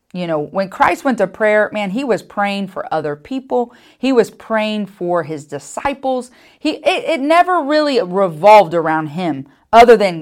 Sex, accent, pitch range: female, American, 185-250 Hz